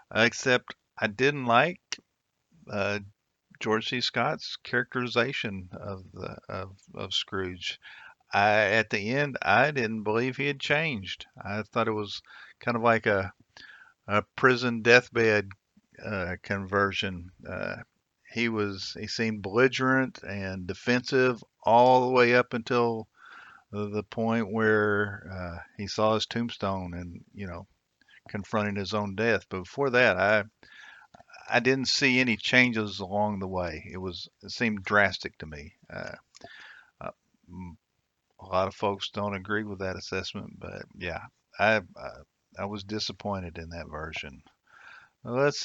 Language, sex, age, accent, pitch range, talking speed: English, male, 50-69, American, 95-120 Hz, 140 wpm